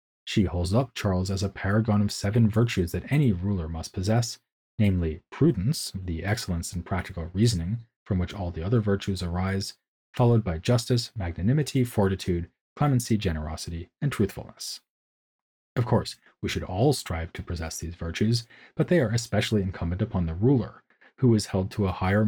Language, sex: English, male